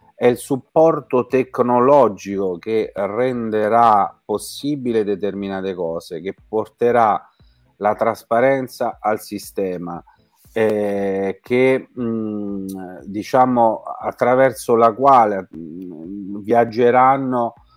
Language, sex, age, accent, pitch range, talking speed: Italian, male, 40-59, native, 95-120 Hz, 80 wpm